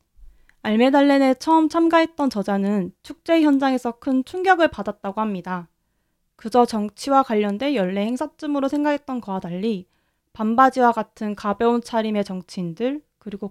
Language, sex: Korean, female